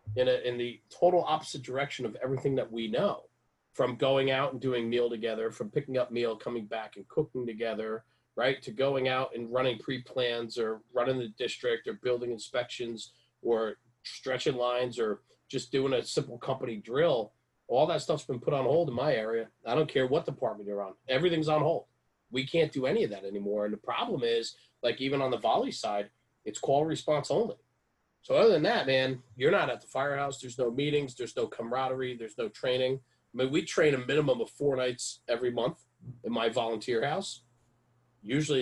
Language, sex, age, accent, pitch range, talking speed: English, male, 30-49, American, 115-135 Hz, 200 wpm